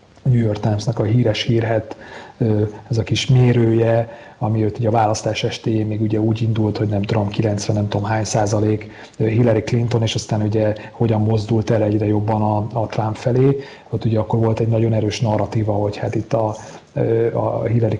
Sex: male